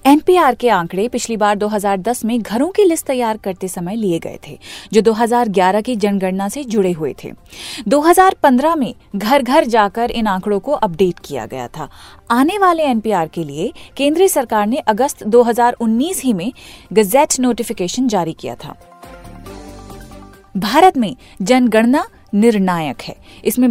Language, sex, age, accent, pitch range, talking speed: Hindi, female, 30-49, native, 195-255 Hz, 150 wpm